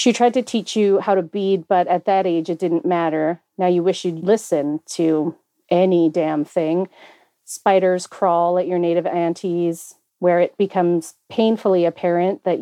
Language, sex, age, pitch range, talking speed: English, female, 40-59, 170-195 Hz, 170 wpm